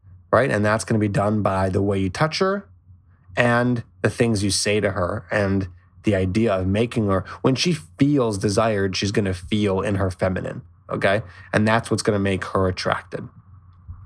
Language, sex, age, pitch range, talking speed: English, male, 20-39, 95-115 Hz, 195 wpm